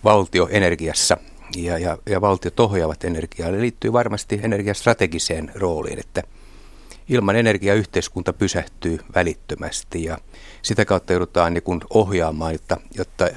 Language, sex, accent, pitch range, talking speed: Finnish, male, native, 85-100 Hz, 120 wpm